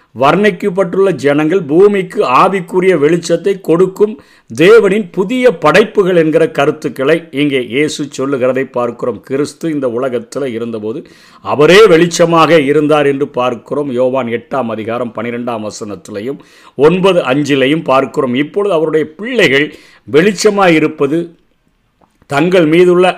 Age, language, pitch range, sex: 50-69, Tamil, 135-180 Hz, male